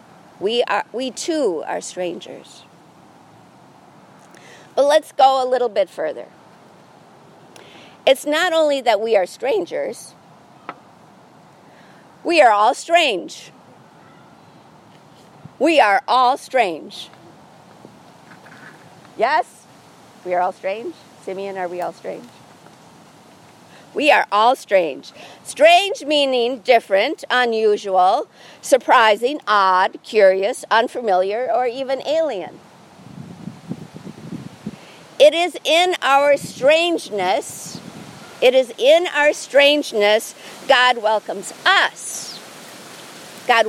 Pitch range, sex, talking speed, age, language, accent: 215-310 Hz, female, 90 wpm, 50-69, English, American